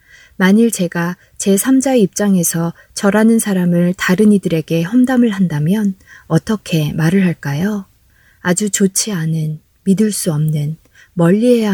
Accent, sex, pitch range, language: native, female, 165-210 Hz, Korean